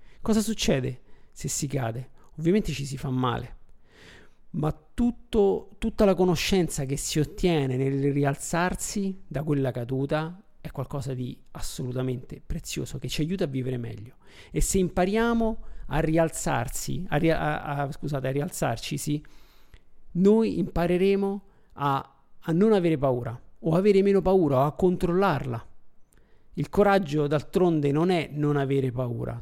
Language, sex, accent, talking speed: Italian, male, native, 140 wpm